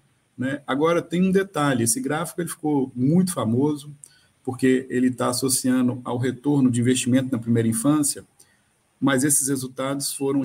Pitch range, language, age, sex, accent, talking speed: 120-145 Hz, Portuguese, 50-69, male, Brazilian, 145 wpm